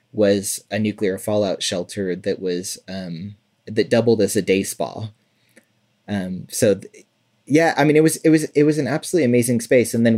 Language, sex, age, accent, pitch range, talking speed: English, male, 30-49, American, 100-120 Hz, 190 wpm